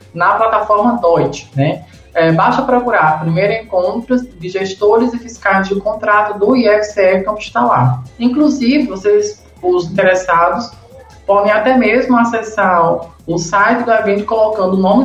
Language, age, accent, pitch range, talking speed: Portuguese, 20-39, Brazilian, 170-230 Hz, 140 wpm